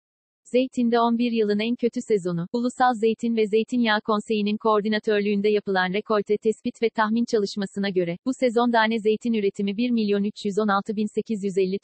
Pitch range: 195-230 Hz